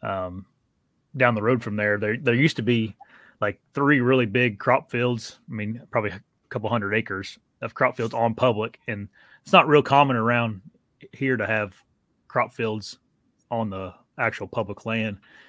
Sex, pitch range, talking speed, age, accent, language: male, 100-125 Hz, 175 wpm, 30-49, American, English